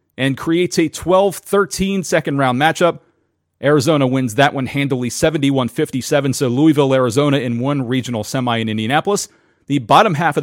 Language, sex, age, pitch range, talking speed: English, male, 40-59, 130-165 Hz, 150 wpm